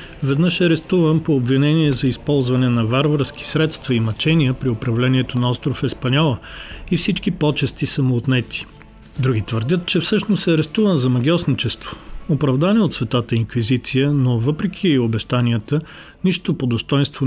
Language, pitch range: Bulgarian, 125-155 Hz